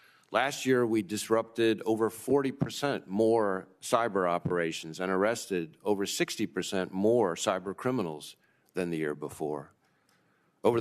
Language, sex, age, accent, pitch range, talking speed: English, male, 50-69, American, 95-115 Hz, 115 wpm